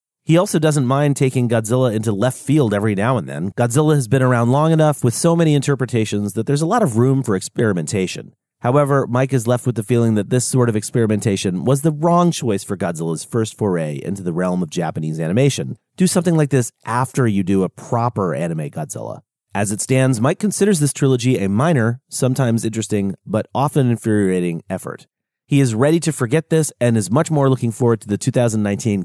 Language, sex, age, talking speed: English, male, 30-49, 200 wpm